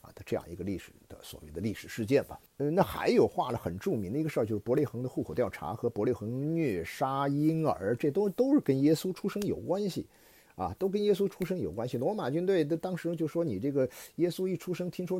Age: 50-69